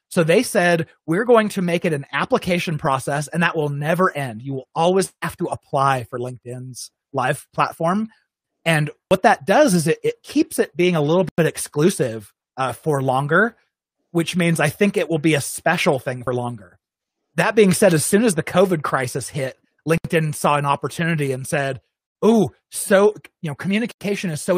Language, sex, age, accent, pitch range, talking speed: English, male, 30-49, American, 140-180 Hz, 190 wpm